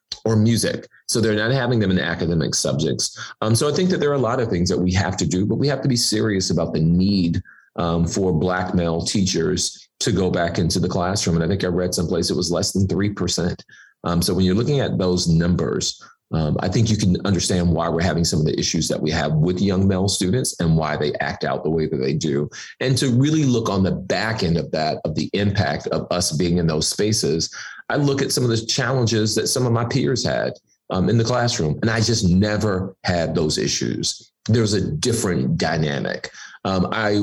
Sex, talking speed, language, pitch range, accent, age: male, 230 wpm, English, 90-115 Hz, American, 30-49